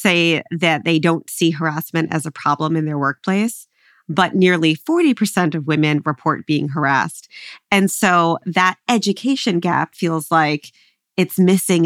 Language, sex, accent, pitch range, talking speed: English, female, American, 155-180 Hz, 145 wpm